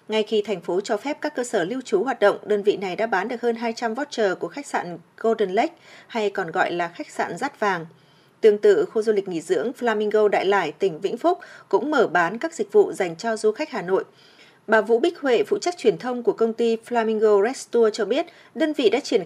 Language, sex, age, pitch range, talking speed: Vietnamese, female, 20-39, 205-310 Hz, 250 wpm